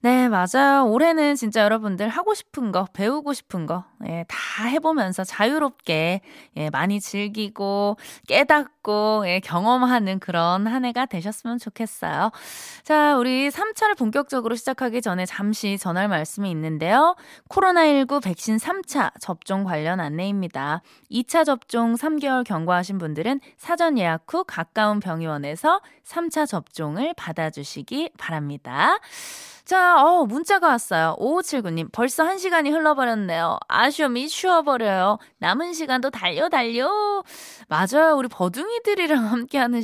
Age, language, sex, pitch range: 20-39, Korean, female, 185-295 Hz